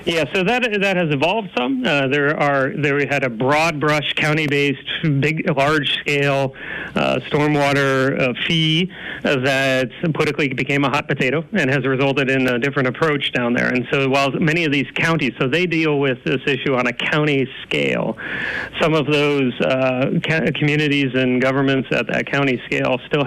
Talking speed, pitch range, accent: 175 wpm, 130-155 Hz, American